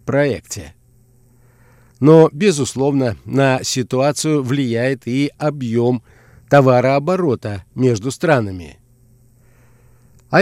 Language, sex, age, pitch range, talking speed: Russian, male, 50-69, 120-145 Hz, 70 wpm